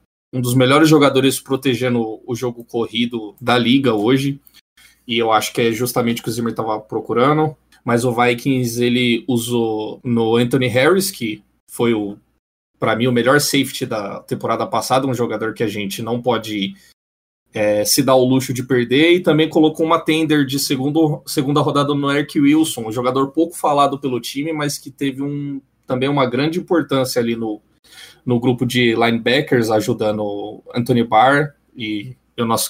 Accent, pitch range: Brazilian, 115-145 Hz